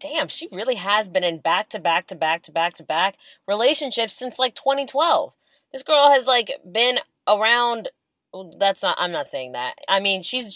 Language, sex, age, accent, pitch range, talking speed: English, female, 20-39, American, 155-220 Hz, 150 wpm